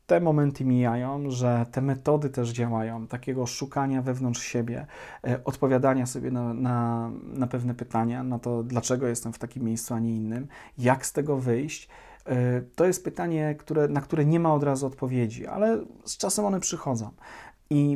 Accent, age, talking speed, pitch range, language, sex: native, 40-59, 160 wpm, 125-165 Hz, Polish, male